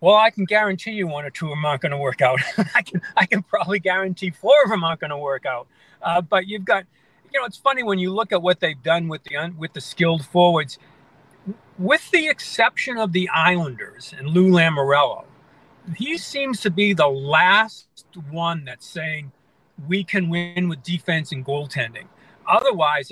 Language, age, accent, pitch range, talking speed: English, 50-69, American, 155-195 Hz, 200 wpm